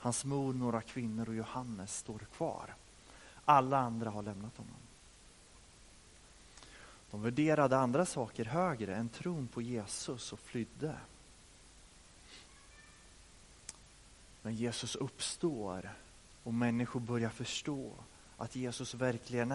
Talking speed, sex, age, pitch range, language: 105 wpm, male, 30-49, 105-140 Hz, Swedish